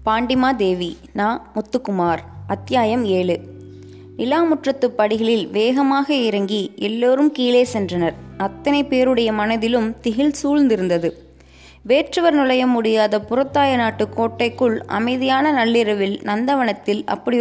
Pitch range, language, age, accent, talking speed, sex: 205-245 Hz, Tamil, 20-39, native, 100 wpm, female